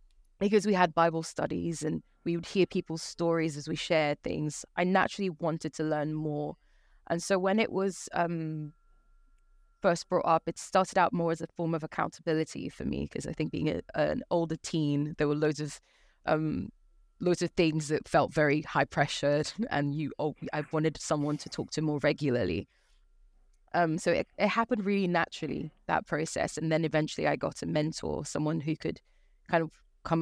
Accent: British